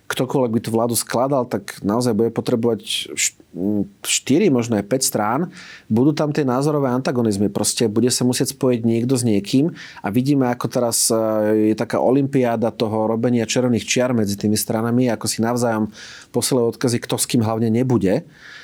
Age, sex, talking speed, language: 30-49, male, 165 wpm, Slovak